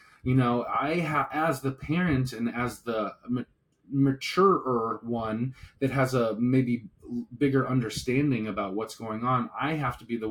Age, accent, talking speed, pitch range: 30-49, American, 155 wpm, 105-130 Hz